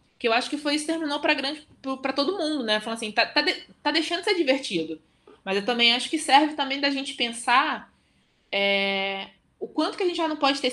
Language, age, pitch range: Portuguese, 20-39, 185-245 Hz